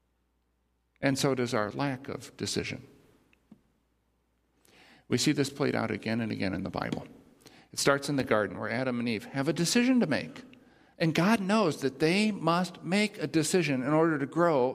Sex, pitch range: male, 115-155 Hz